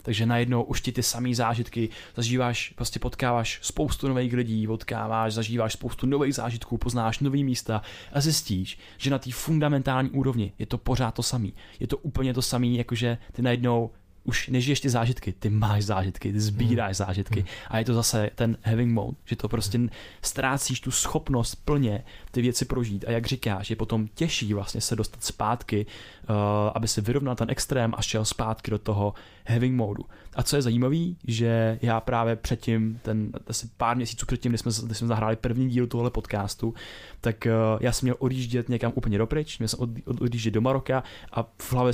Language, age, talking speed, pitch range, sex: Czech, 20-39, 190 wpm, 110-125 Hz, male